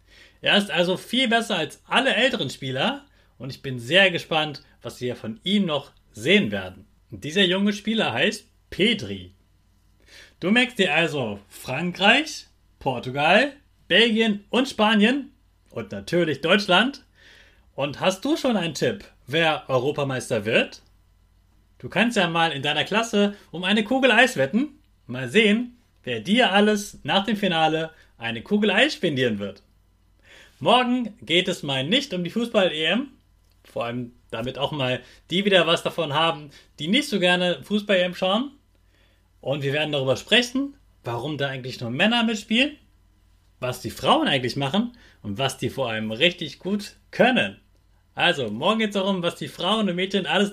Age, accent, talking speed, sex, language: 30-49, German, 155 wpm, male, German